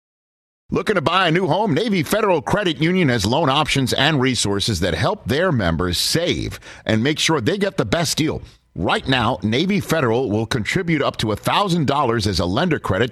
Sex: male